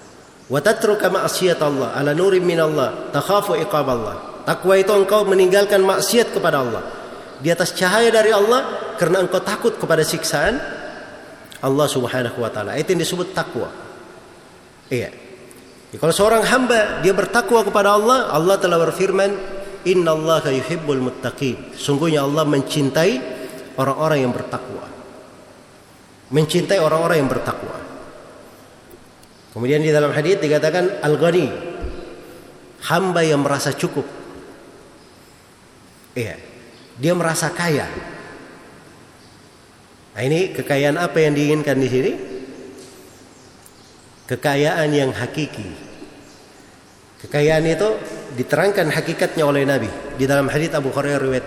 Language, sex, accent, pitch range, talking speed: Indonesian, male, native, 135-185 Hz, 105 wpm